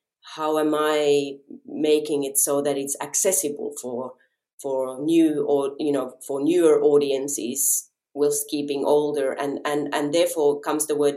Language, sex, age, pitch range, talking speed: English, female, 30-49, 140-165 Hz, 150 wpm